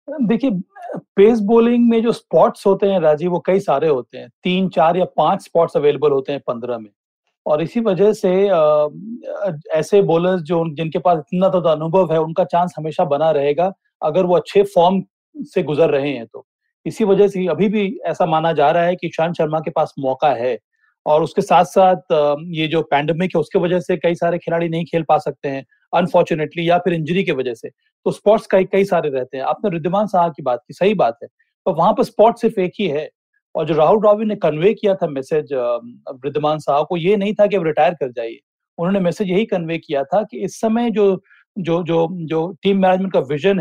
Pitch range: 160-205 Hz